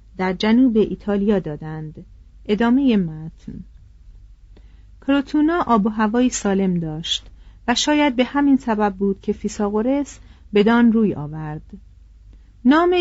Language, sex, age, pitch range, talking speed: Persian, female, 40-59, 190-250 Hz, 110 wpm